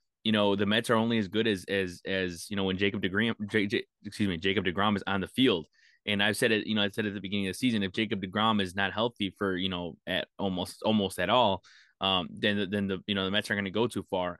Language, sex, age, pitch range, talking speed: English, male, 20-39, 95-115 Hz, 285 wpm